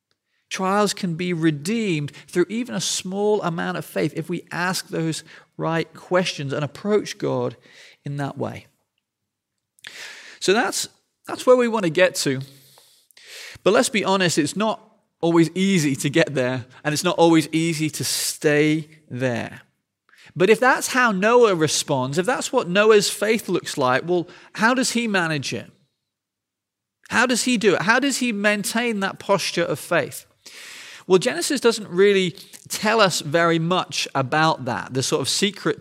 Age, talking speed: 40-59, 165 wpm